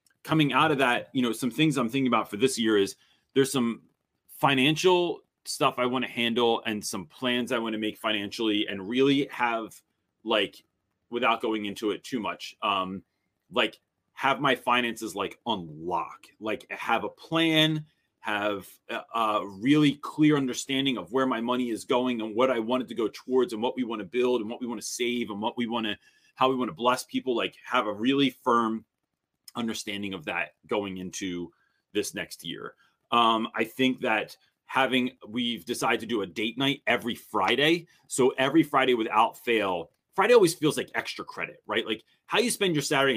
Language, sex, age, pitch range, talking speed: English, male, 30-49, 110-135 Hz, 190 wpm